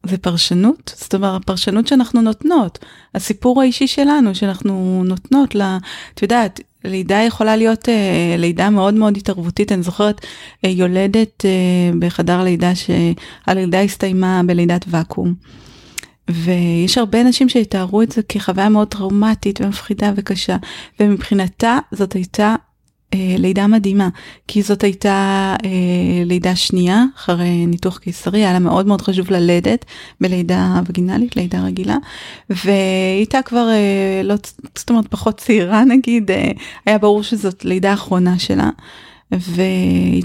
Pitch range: 185-215 Hz